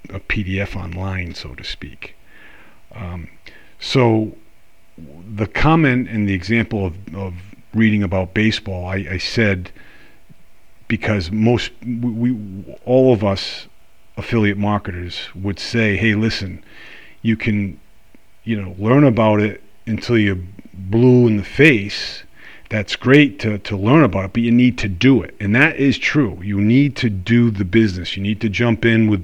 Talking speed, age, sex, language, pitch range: 155 wpm, 40-59, male, English, 95-115 Hz